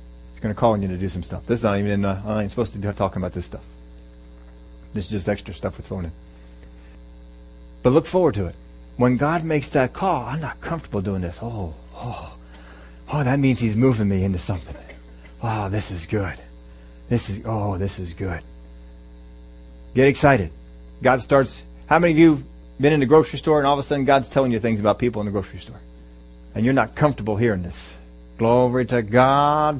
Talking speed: 210 wpm